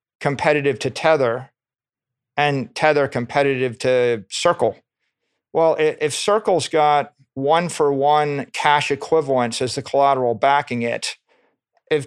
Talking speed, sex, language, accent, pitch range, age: 105 wpm, male, English, American, 130-155 Hz, 50-69